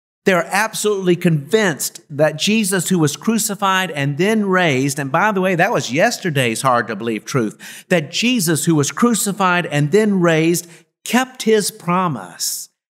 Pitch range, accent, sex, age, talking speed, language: 140-190 Hz, American, male, 50-69, 145 wpm, English